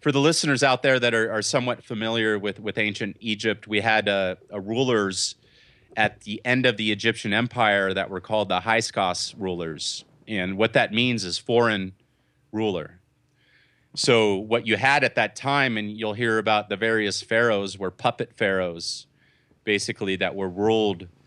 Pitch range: 100-120 Hz